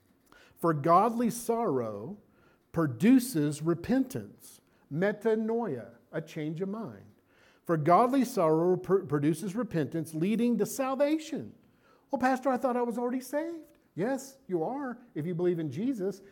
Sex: male